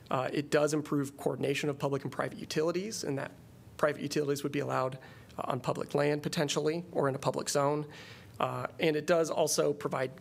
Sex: male